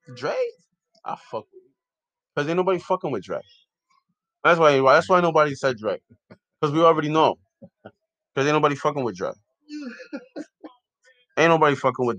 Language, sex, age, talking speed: English, male, 20-39, 160 wpm